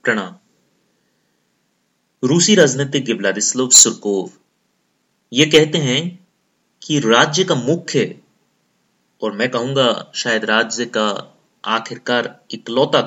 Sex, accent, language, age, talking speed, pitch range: male, native, Hindi, 30-49, 90 wpm, 130-180 Hz